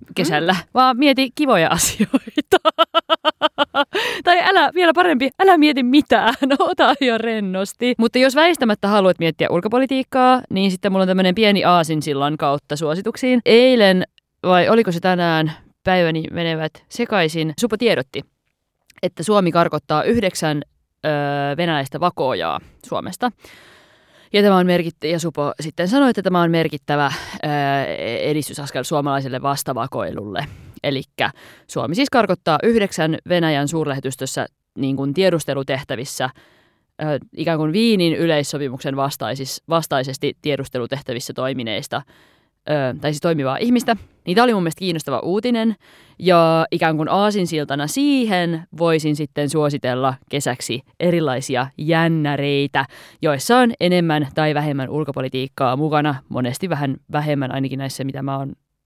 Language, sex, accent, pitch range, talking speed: Finnish, female, native, 140-220 Hz, 120 wpm